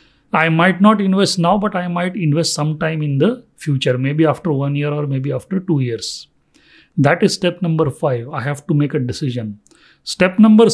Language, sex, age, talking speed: English, male, 40-59, 195 wpm